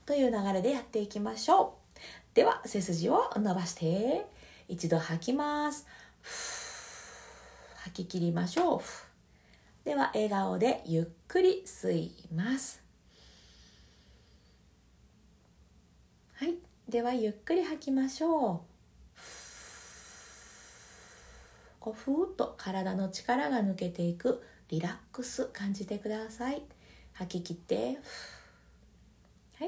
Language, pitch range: Japanese, 155-240 Hz